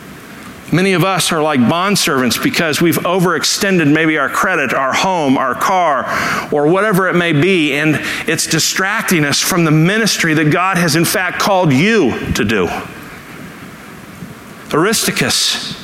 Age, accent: 50-69, American